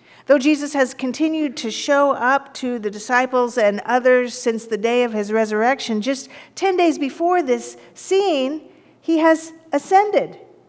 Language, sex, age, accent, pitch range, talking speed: English, female, 50-69, American, 205-295 Hz, 150 wpm